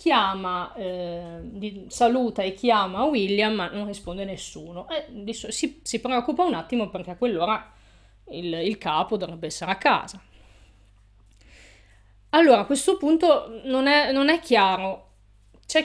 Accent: native